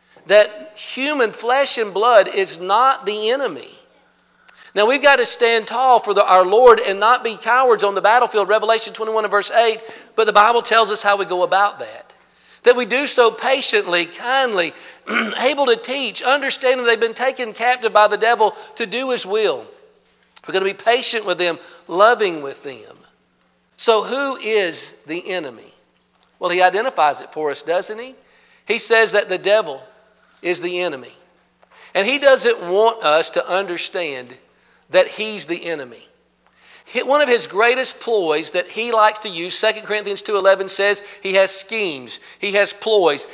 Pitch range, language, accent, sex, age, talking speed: 195-250 Hz, English, American, male, 50-69, 170 wpm